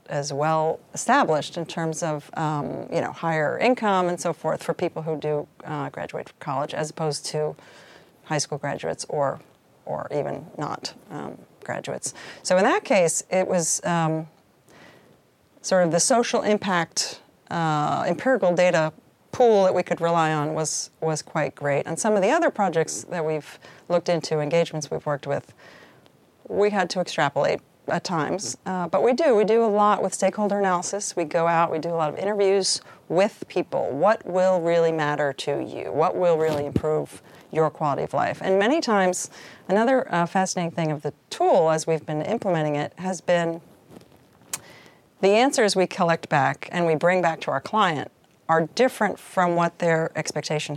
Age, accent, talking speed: 40-59, American, 175 wpm